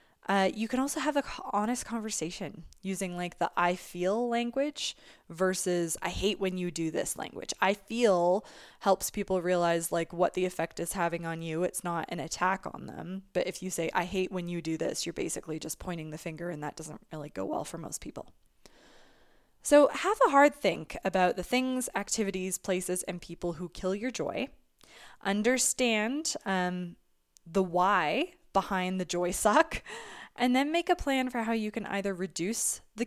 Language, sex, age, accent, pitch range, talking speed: English, female, 20-39, American, 180-240 Hz, 185 wpm